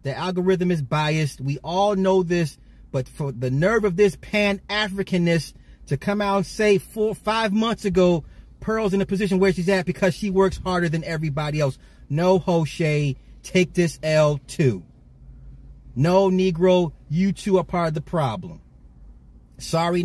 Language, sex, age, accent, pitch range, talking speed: English, male, 30-49, American, 135-200 Hz, 160 wpm